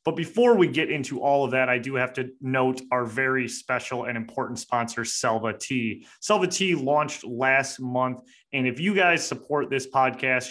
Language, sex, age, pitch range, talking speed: English, male, 30-49, 125-150 Hz, 190 wpm